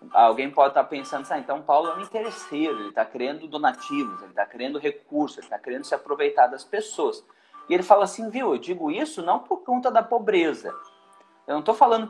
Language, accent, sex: Portuguese, Brazilian, male